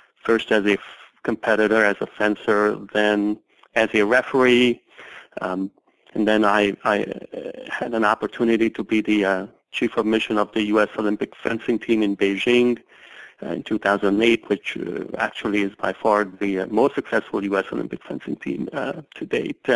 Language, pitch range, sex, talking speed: English, 100-115 Hz, male, 165 wpm